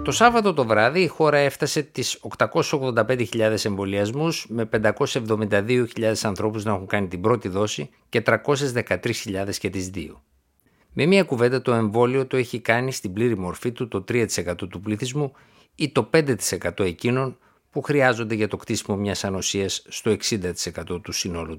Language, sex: Greek, male